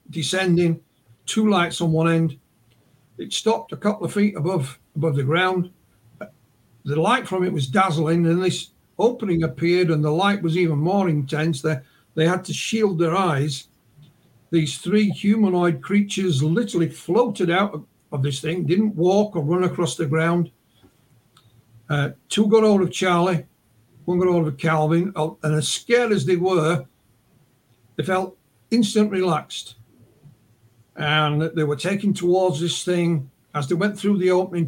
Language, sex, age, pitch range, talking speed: English, male, 60-79, 150-185 Hz, 160 wpm